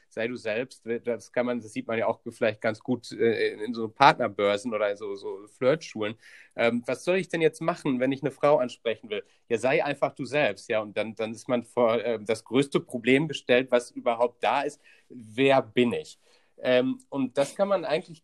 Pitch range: 125-160 Hz